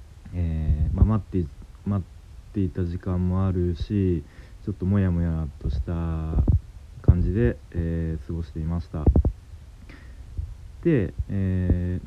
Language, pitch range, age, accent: Japanese, 85-105 Hz, 40-59, native